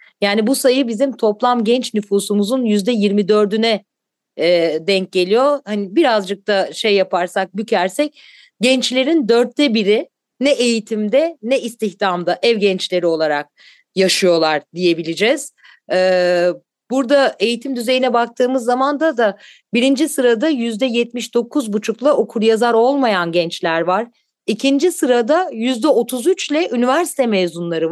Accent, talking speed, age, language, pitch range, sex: native, 105 wpm, 40-59, Turkish, 200-265 Hz, female